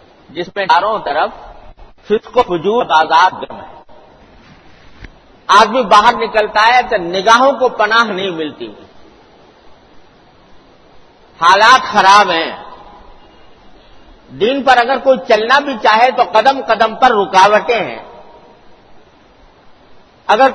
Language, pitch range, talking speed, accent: English, 175-240 Hz, 110 wpm, Indian